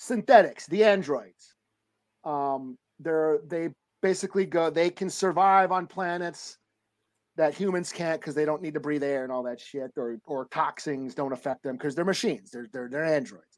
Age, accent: 40-59, American